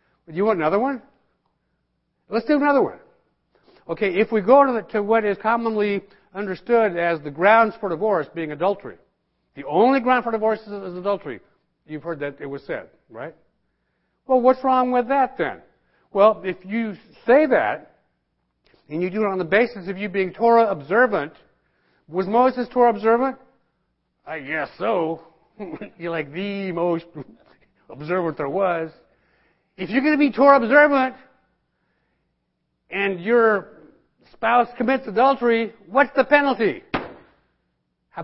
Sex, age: male, 60-79